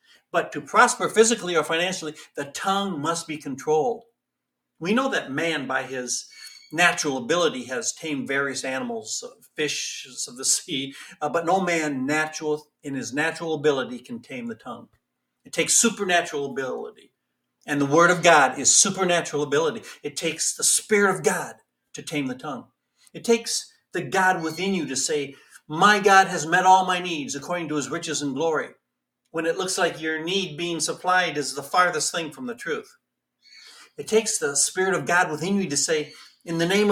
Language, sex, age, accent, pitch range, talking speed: English, male, 60-79, American, 145-195 Hz, 180 wpm